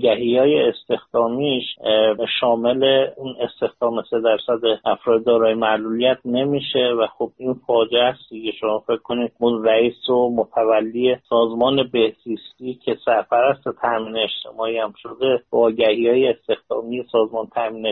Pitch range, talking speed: 115-135 Hz, 125 wpm